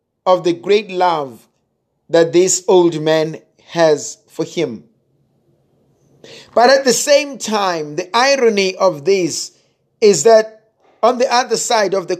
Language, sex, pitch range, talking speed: English, male, 160-225 Hz, 140 wpm